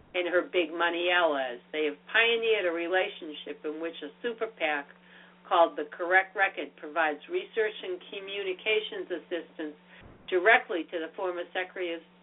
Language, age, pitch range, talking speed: English, 60-79, 160-205 Hz, 145 wpm